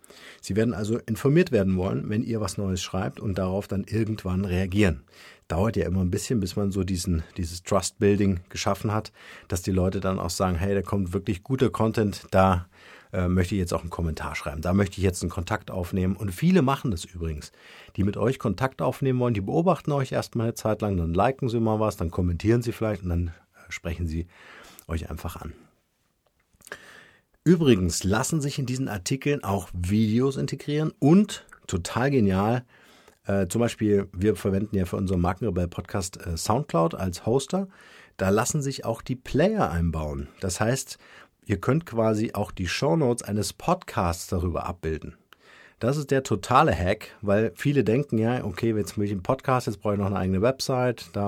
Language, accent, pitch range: German, German, 90-120 Hz